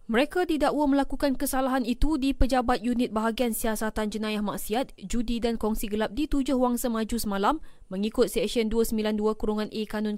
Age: 20-39